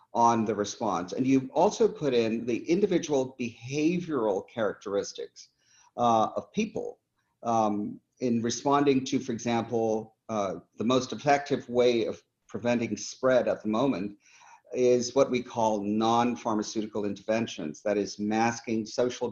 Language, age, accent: English, 50-69, American